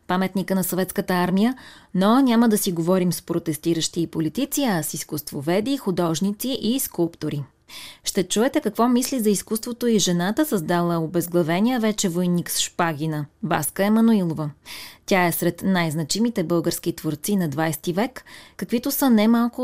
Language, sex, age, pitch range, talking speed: Bulgarian, female, 20-39, 175-220 Hz, 145 wpm